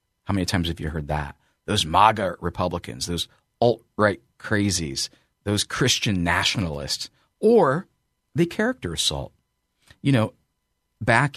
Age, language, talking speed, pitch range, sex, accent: 40-59, English, 120 wpm, 80-100 Hz, male, American